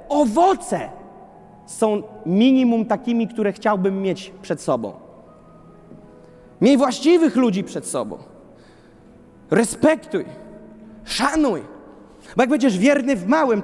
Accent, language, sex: native, Polish, male